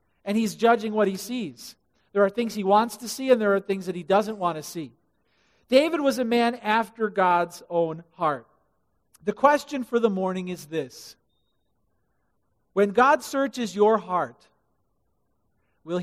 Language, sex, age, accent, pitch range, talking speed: English, male, 50-69, American, 165-220 Hz, 165 wpm